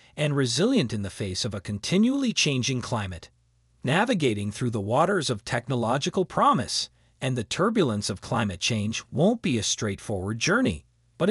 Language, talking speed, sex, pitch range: Italian, 155 wpm, male, 105-155 Hz